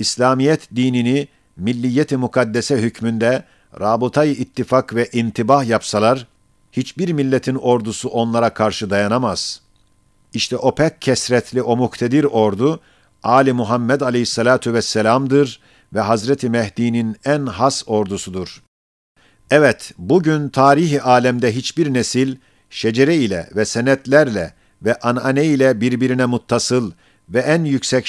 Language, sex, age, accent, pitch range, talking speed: Turkish, male, 50-69, native, 115-135 Hz, 105 wpm